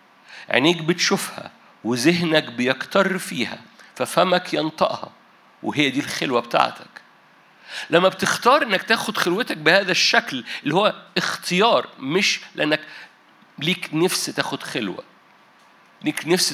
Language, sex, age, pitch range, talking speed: Arabic, male, 50-69, 155-200 Hz, 105 wpm